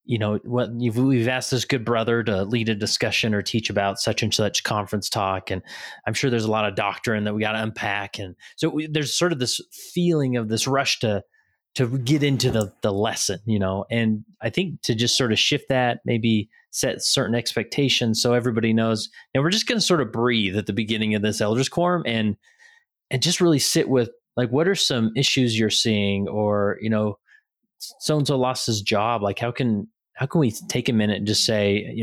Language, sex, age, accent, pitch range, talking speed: English, male, 30-49, American, 110-140 Hz, 215 wpm